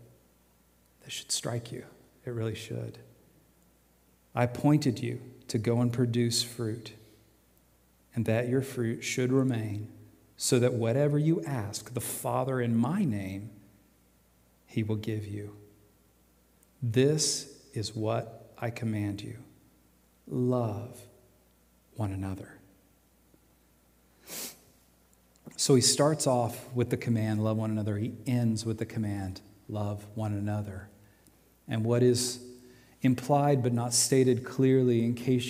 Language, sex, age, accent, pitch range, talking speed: English, male, 40-59, American, 105-125 Hz, 120 wpm